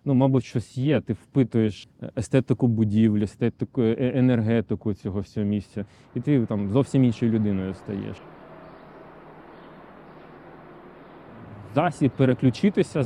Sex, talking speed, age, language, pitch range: male, 100 wpm, 20-39, Ukrainian, 105-130 Hz